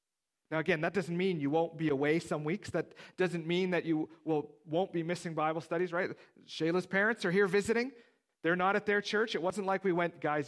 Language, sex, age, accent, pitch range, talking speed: English, male, 40-59, American, 150-185 Hz, 230 wpm